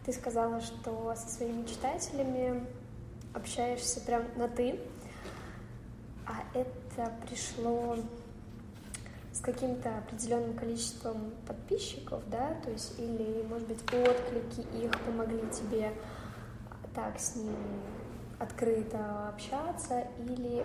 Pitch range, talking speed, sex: 220-250 Hz, 100 wpm, female